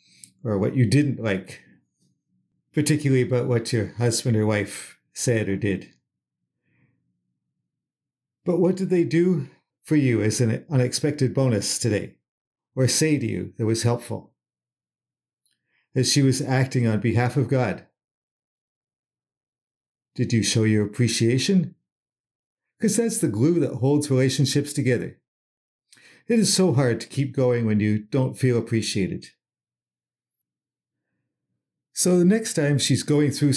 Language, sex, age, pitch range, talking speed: English, male, 50-69, 110-150 Hz, 130 wpm